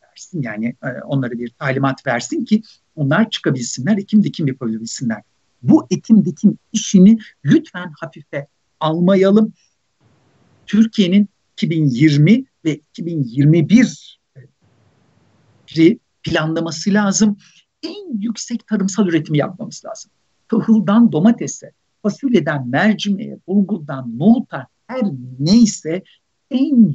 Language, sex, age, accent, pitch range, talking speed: Turkish, male, 60-79, native, 145-205 Hz, 85 wpm